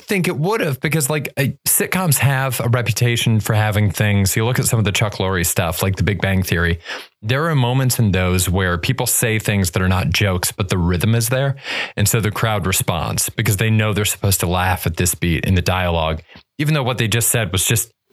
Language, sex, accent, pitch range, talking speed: English, male, American, 100-130 Hz, 240 wpm